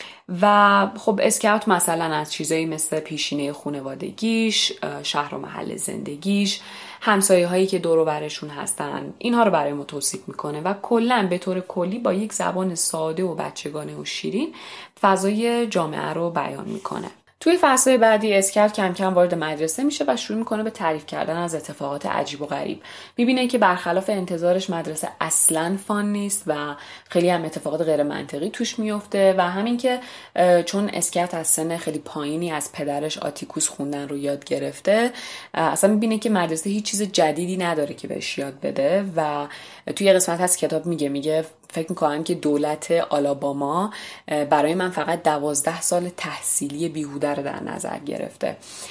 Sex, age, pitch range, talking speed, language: female, 30-49, 150-195 Hz, 160 wpm, Persian